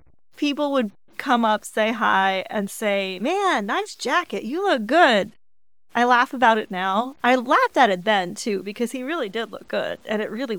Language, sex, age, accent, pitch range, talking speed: English, female, 30-49, American, 195-255 Hz, 195 wpm